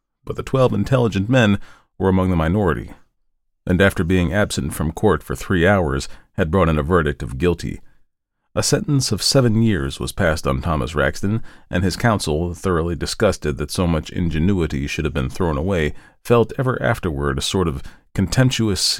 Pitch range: 80-110 Hz